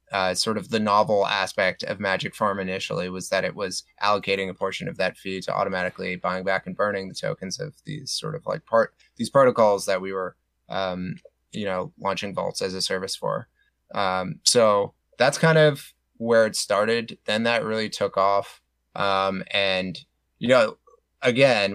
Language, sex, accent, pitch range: English, male, American, 95-110 Hz